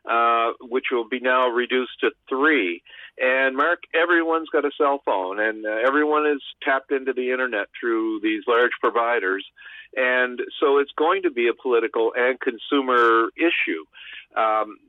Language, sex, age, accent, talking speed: English, male, 50-69, American, 155 wpm